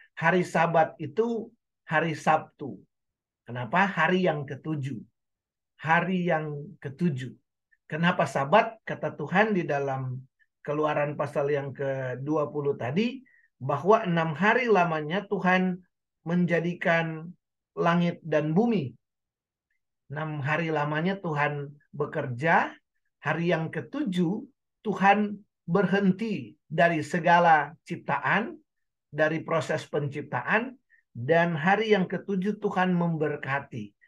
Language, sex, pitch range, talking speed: Indonesian, male, 145-190 Hz, 95 wpm